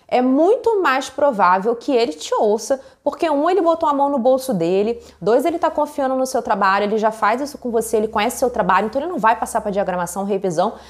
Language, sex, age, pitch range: Portuguese, female, 20-39, 215-275 Hz